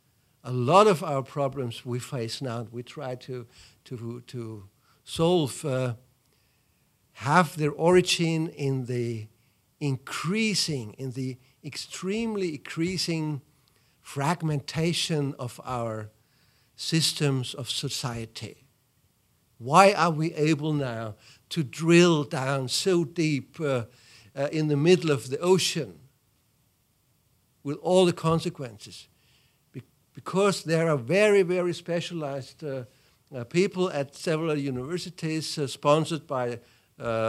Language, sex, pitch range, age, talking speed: English, male, 125-170 Hz, 60-79, 110 wpm